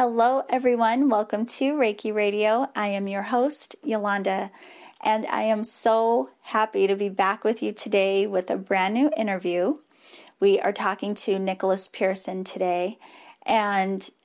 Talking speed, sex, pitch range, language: 145 wpm, female, 195-230 Hz, English